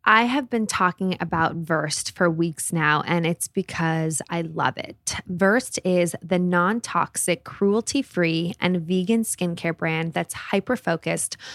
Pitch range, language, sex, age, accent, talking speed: 170-195 Hz, English, female, 20-39, American, 135 wpm